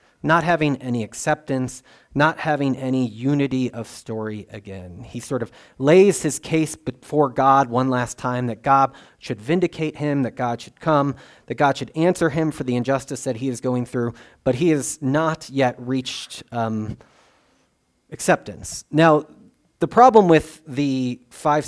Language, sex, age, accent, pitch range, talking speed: English, male, 30-49, American, 125-155 Hz, 160 wpm